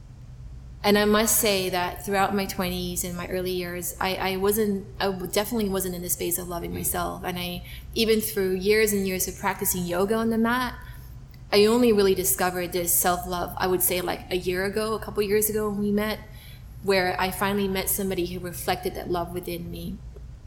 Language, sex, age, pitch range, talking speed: English, female, 20-39, 180-205 Hz, 200 wpm